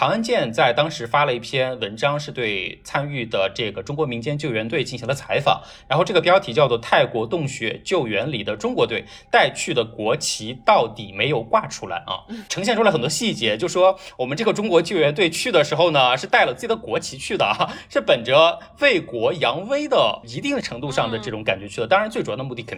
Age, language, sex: 20-39, Chinese, male